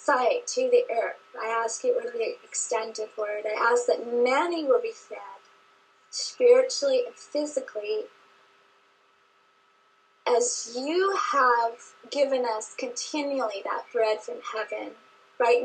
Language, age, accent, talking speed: English, 30-49, American, 125 wpm